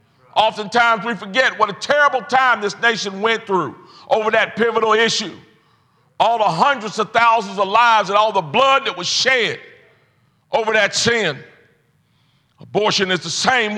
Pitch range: 170-240 Hz